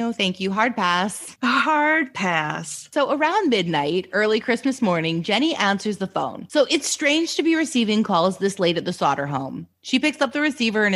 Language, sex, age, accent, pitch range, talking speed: English, female, 20-39, American, 165-230 Hz, 195 wpm